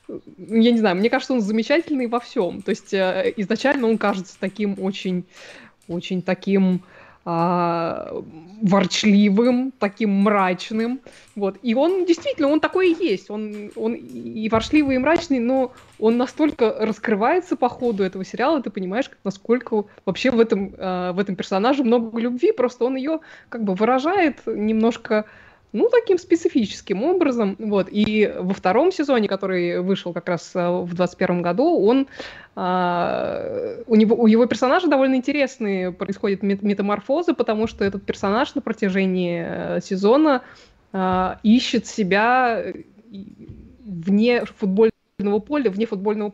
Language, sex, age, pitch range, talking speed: Russian, female, 20-39, 195-255 Hz, 135 wpm